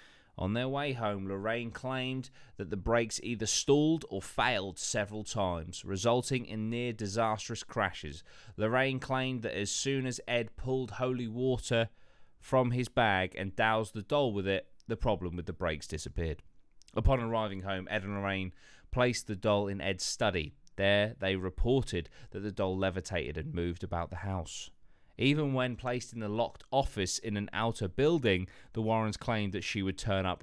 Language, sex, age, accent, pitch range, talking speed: English, male, 20-39, British, 90-115 Hz, 175 wpm